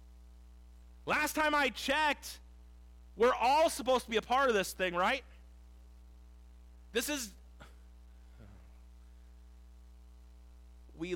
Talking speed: 95 wpm